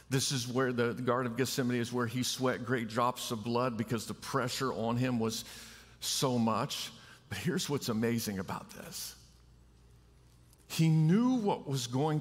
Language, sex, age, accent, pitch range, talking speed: English, male, 50-69, American, 115-155 Hz, 165 wpm